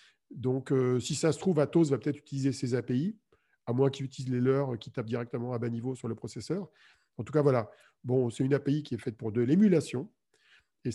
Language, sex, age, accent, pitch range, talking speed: French, male, 40-59, French, 120-160 Hz, 230 wpm